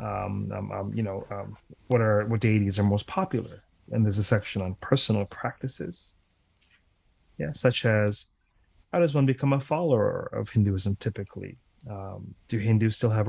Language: English